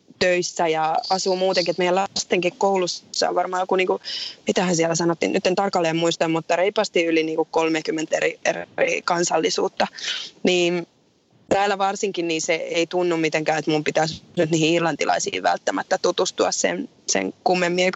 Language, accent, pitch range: Finnish, native, 170-200 Hz